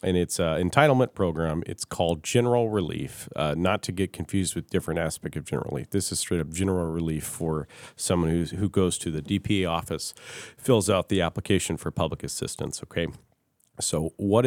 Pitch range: 85-100 Hz